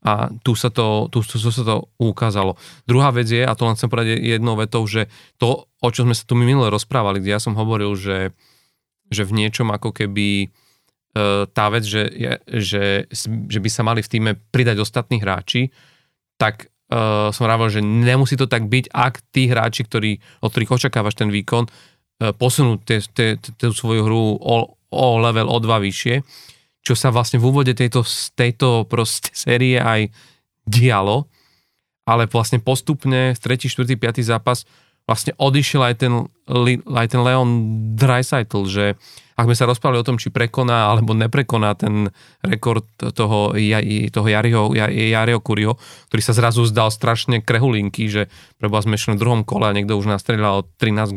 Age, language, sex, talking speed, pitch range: 30-49, Slovak, male, 170 wpm, 110-125 Hz